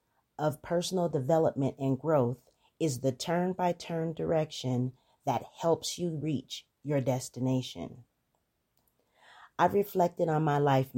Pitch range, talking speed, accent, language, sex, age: 130-155 Hz, 110 wpm, American, English, female, 30-49